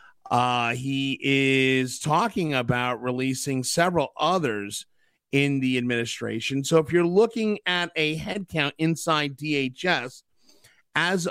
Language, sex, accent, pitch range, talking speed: English, male, American, 135-175 Hz, 110 wpm